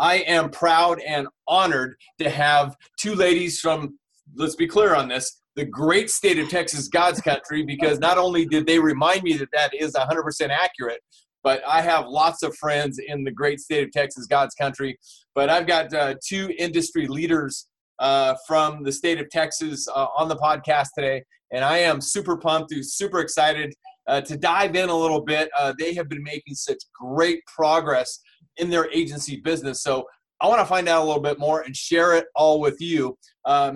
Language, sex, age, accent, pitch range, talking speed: English, male, 30-49, American, 140-170 Hz, 195 wpm